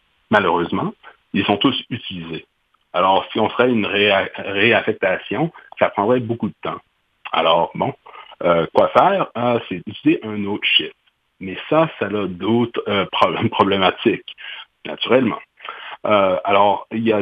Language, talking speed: French, 145 wpm